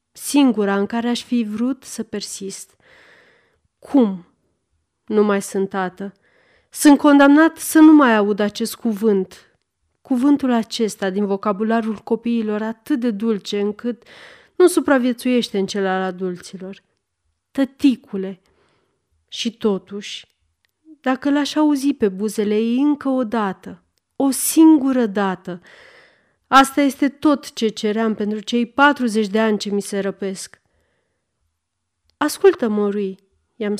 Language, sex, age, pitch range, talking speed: Romanian, female, 30-49, 190-260 Hz, 120 wpm